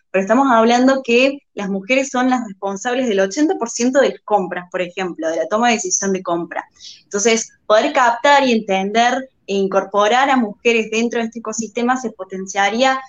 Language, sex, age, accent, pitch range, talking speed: Spanish, female, 10-29, Argentinian, 200-250 Hz, 175 wpm